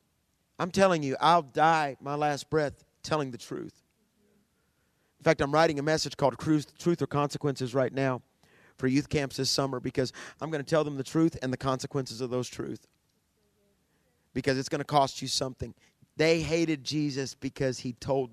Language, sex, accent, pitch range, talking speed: English, male, American, 130-155 Hz, 180 wpm